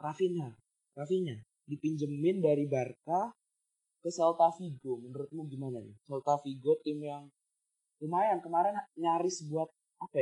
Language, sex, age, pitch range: Indonesian, male, 20-39, 130-160 Hz